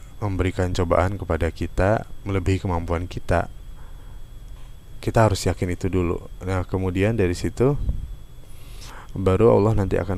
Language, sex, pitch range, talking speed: Indonesian, male, 90-110 Hz, 120 wpm